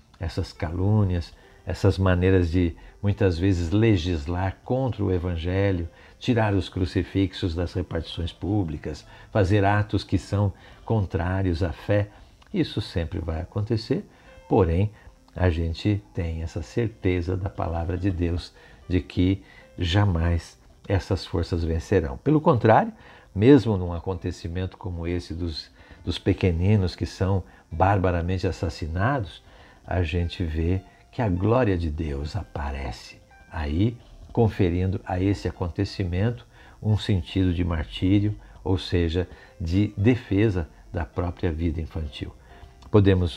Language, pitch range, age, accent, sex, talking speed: Portuguese, 85-100 Hz, 60-79, Brazilian, male, 120 wpm